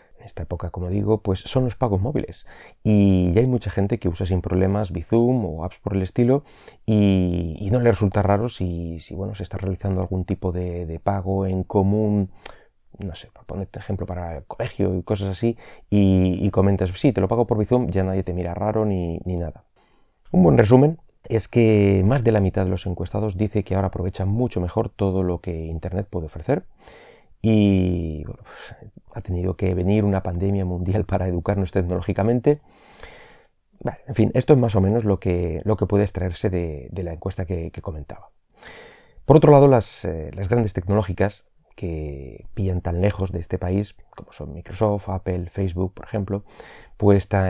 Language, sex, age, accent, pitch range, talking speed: Spanish, male, 30-49, Spanish, 90-110 Hz, 185 wpm